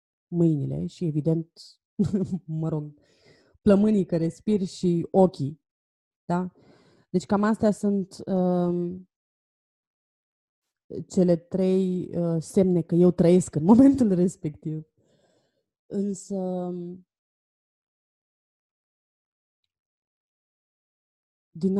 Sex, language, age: female, Romanian, 20-39